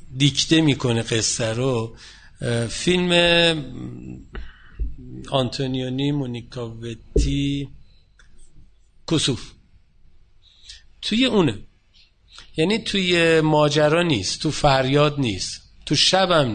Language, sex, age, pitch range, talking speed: Persian, male, 50-69, 115-155 Hz, 75 wpm